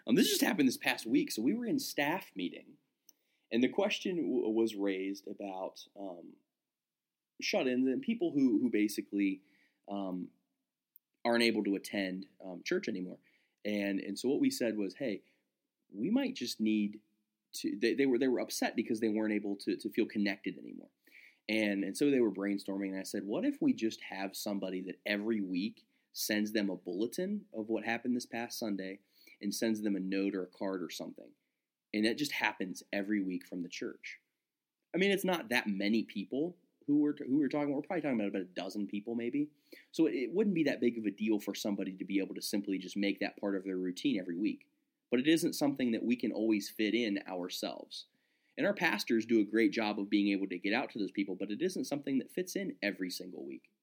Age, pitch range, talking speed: 20-39, 100-150 Hz, 215 wpm